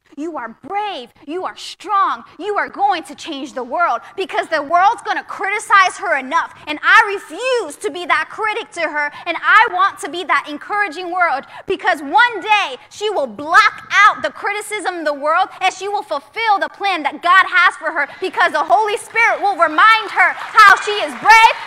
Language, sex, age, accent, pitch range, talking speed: English, female, 20-39, American, 280-390 Hz, 200 wpm